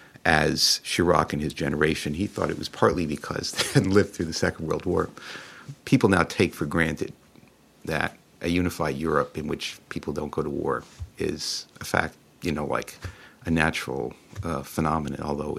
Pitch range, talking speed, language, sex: 80-110 Hz, 175 wpm, English, male